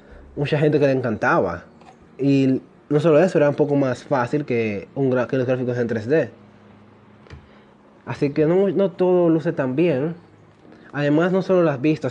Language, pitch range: Spanish, 115-150 Hz